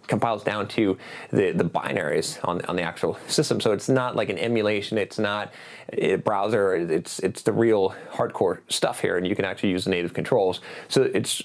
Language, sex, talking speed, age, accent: English, male, 200 wpm, 20-39, American